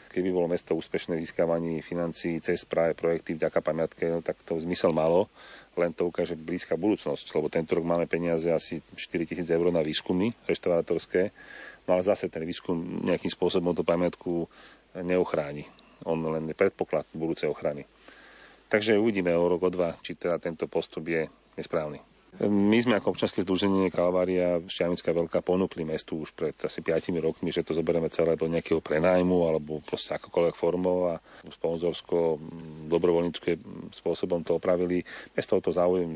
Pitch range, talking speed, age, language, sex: 80-90 Hz, 160 wpm, 40-59, Slovak, male